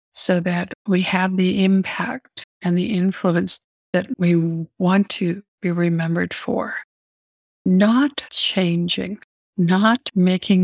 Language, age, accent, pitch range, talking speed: English, 60-79, American, 170-195 Hz, 115 wpm